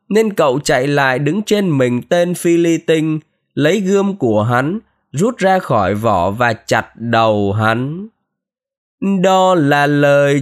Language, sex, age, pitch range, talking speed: Vietnamese, male, 20-39, 155-190 Hz, 145 wpm